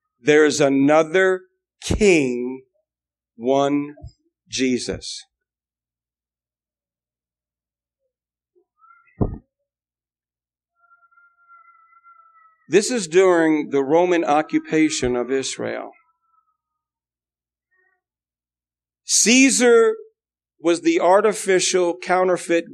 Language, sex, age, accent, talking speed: English, male, 50-69, American, 50 wpm